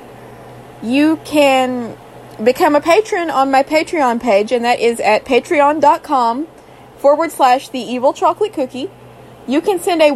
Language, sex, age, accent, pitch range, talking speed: English, female, 20-39, American, 240-315 Hz, 140 wpm